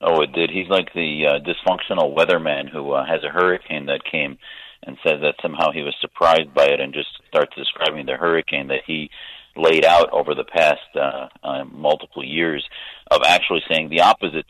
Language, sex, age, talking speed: English, male, 40-59, 195 wpm